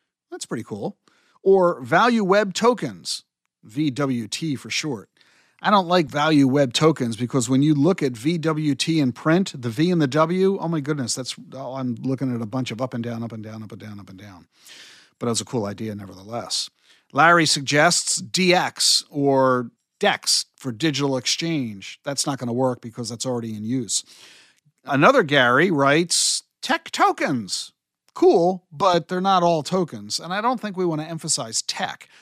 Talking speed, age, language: 180 wpm, 50-69, English